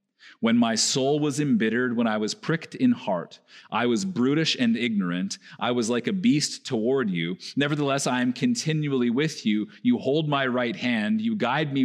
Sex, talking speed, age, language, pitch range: male, 185 wpm, 40-59, English, 135-195 Hz